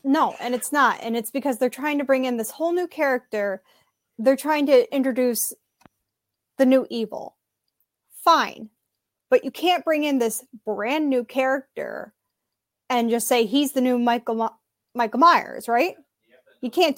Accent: American